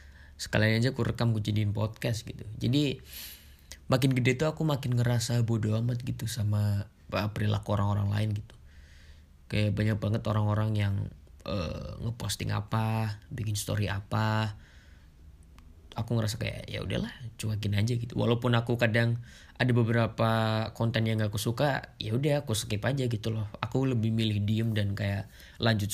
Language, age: Indonesian, 20-39